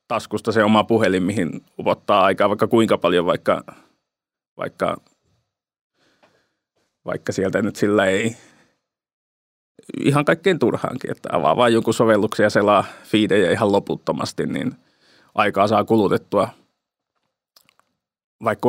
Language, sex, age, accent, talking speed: Finnish, male, 30-49, native, 110 wpm